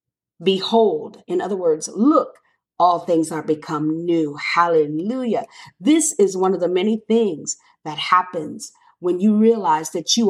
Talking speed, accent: 145 wpm, American